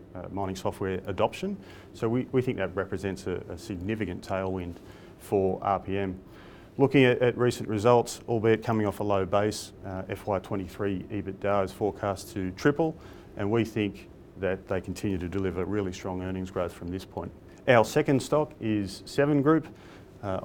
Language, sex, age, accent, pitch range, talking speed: English, male, 40-59, Australian, 95-110 Hz, 165 wpm